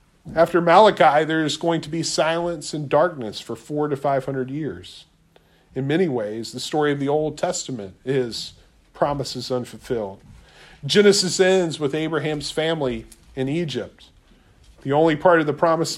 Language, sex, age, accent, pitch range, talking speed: English, male, 40-59, American, 135-175 Hz, 155 wpm